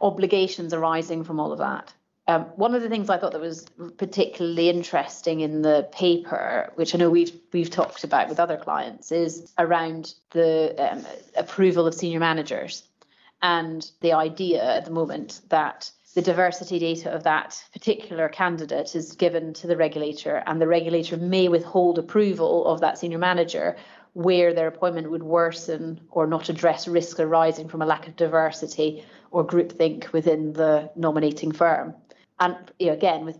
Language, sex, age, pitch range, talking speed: English, female, 30-49, 160-175 Hz, 165 wpm